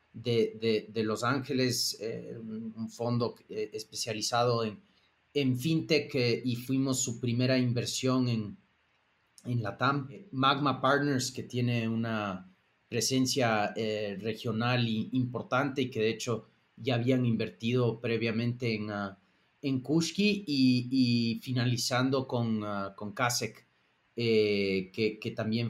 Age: 30-49